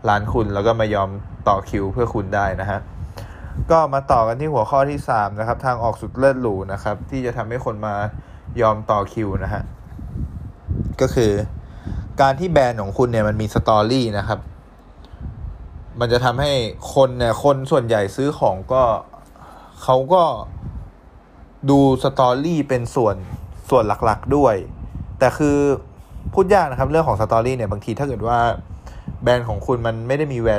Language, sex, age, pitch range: Thai, male, 20-39, 100-130 Hz